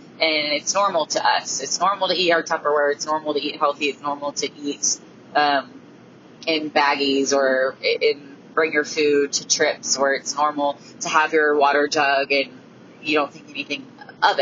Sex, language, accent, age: female, English, American, 20-39